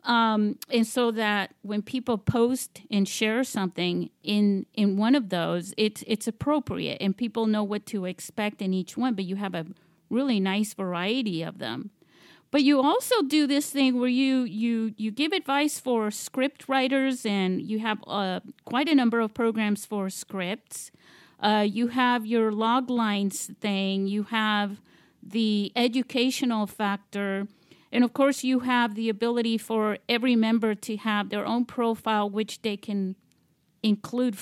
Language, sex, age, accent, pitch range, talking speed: English, female, 40-59, American, 195-245 Hz, 160 wpm